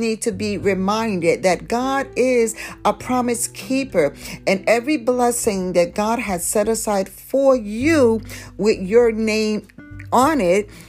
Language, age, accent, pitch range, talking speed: English, 50-69, American, 180-220 Hz, 140 wpm